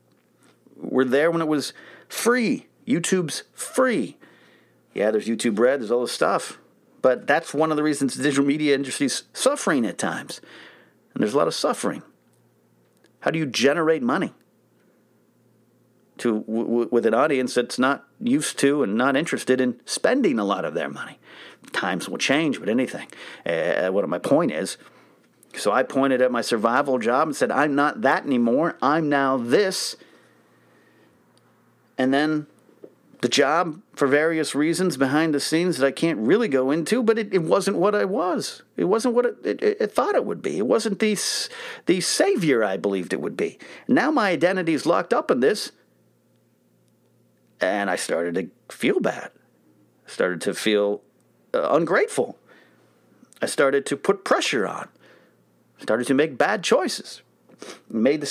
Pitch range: 110-165 Hz